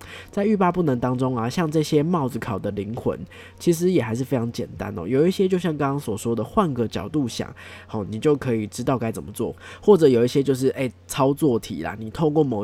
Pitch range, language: 110-145 Hz, Chinese